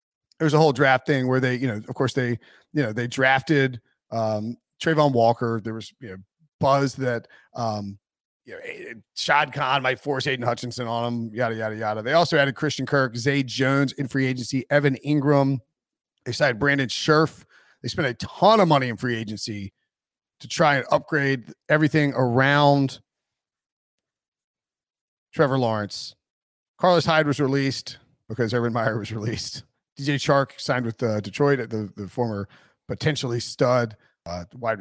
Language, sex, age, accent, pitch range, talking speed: English, male, 40-59, American, 115-145 Hz, 165 wpm